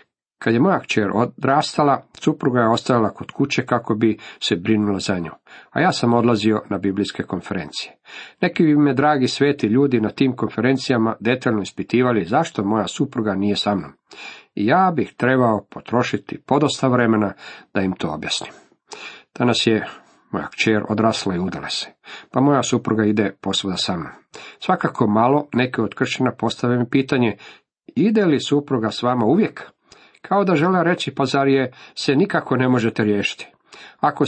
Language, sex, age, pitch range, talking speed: Croatian, male, 50-69, 105-140 Hz, 165 wpm